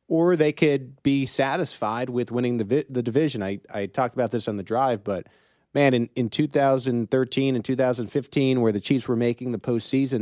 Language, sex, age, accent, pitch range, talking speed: English, male, 30-49, American, 115-150 Hz, 190 wpm